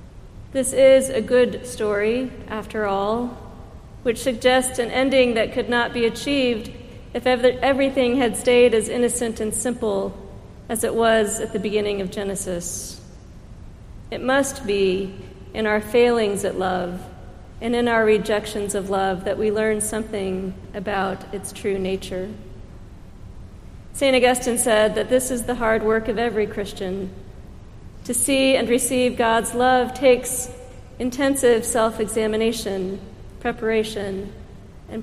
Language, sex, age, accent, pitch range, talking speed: English, female, 40-59, American, 200-250 Hz, 130 wpm